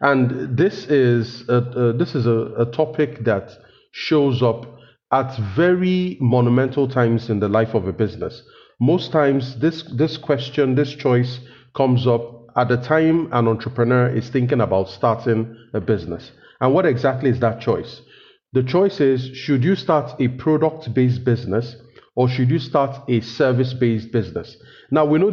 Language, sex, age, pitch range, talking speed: English, male, 40-59, 115-140 Hz, 165 wpm